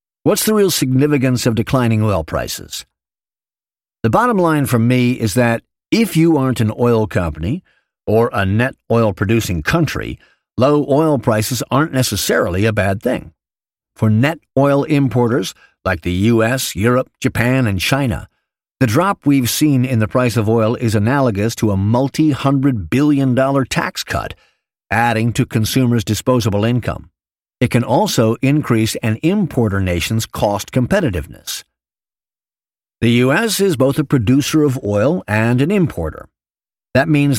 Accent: American